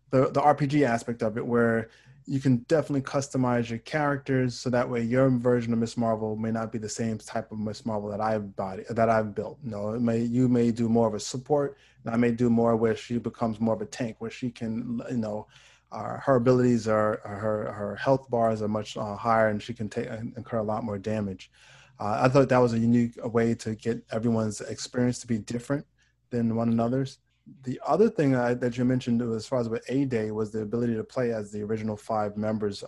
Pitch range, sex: 110-125 Hz, male